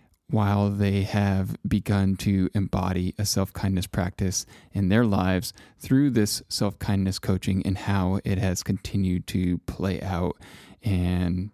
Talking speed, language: 130 wpm, English